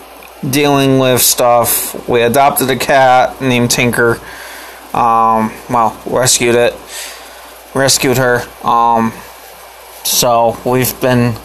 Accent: American